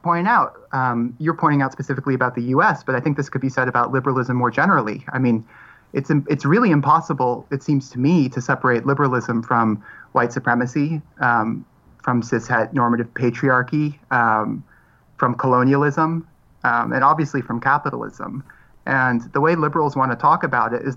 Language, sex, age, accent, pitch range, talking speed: English, male, 30-49, American, 120-145 Hz, 170 wpm